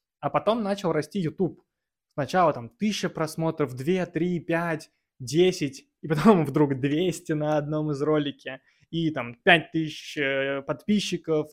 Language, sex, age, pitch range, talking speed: Russian, male, 20-39, 145-175 Hz, 130 wpm